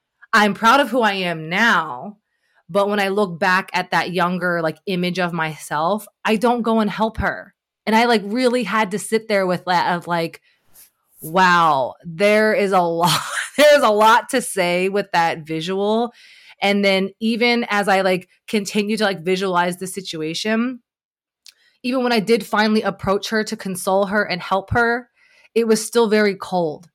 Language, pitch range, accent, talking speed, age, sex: English, 175-220 Hz, American, 180 wpm, 20-39, female